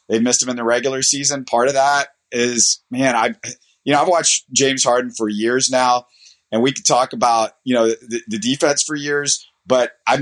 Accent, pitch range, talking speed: American, 115-140 Hz, 210 wpm